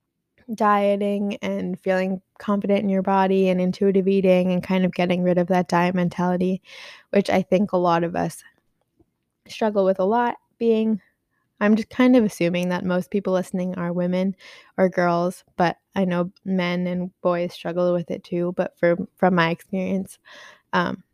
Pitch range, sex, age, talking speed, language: 175-195 Hz, female, 20-39, 170 wpm, English